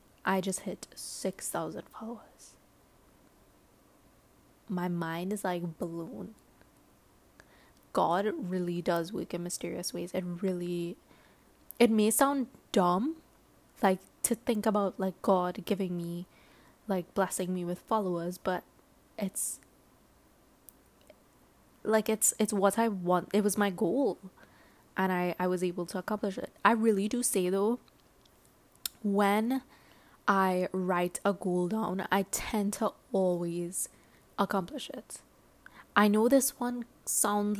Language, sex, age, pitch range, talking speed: English, female, 20-39, 180-220 Hz, 125 wpm